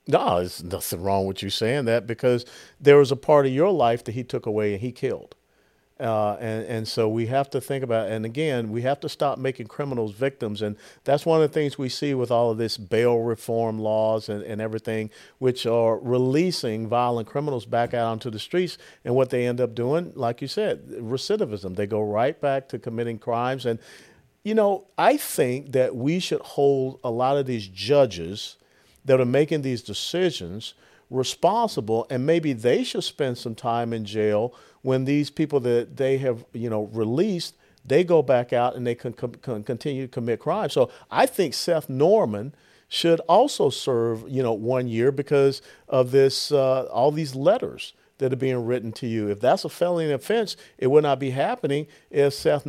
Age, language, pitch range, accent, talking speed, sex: 50-69, English, 115-140 Hz, American, 200 wpm, male